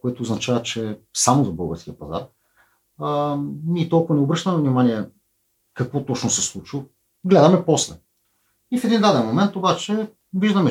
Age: 40-59